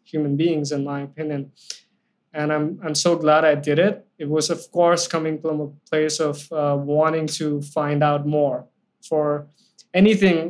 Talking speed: 170 wpm